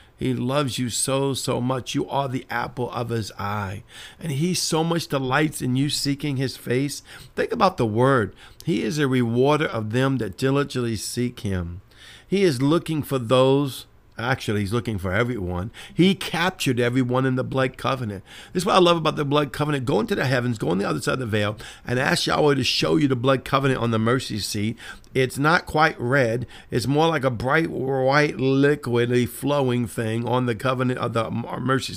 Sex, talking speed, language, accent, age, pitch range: male, 200 wpm, English, American, 50-69, 115-140 Hz